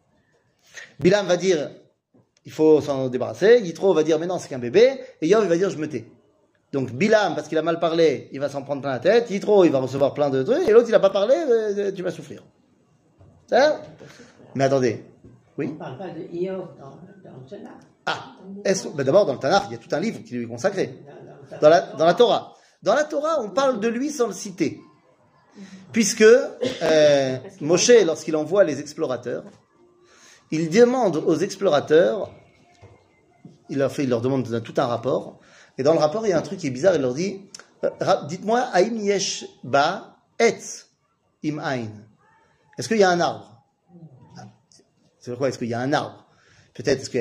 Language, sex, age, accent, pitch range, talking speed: French, male, 30-49, French, 140-200 Hz, 185 wpm